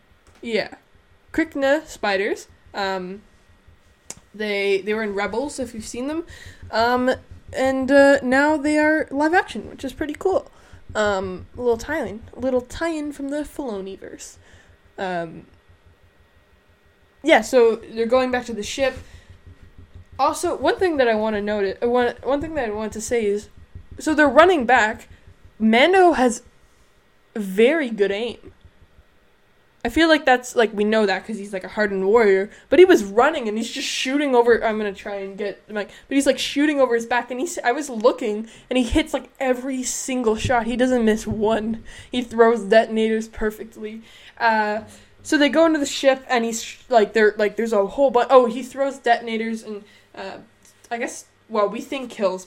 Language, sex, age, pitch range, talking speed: English, female, 10-29, 205-265 Hz, 175 wpm